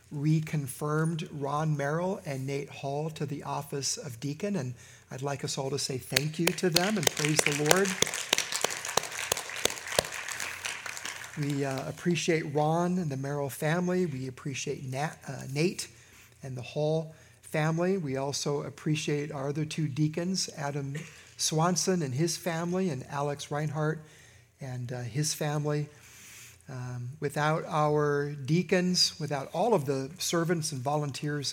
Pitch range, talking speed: 130-160 Hz, 140 wpm